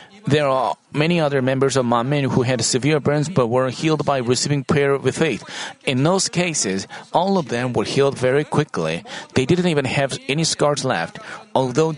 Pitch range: 135-175 Hz